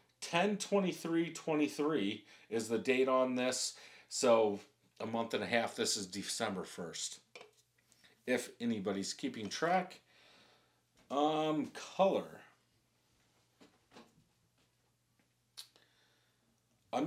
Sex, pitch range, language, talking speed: male, 110-145 Hz, English, 90 wpm